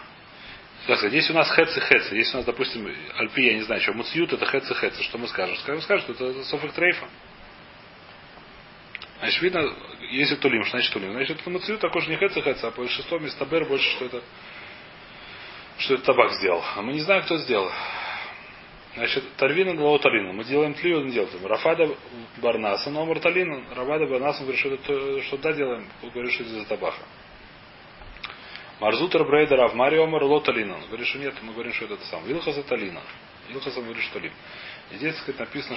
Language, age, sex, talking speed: Russian, 30-49, male, 180 wpm